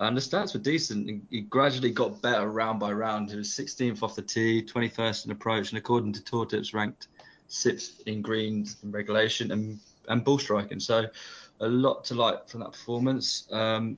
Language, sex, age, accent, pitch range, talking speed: English, male, 20-39, British, 110-120 Hz, 195 wpm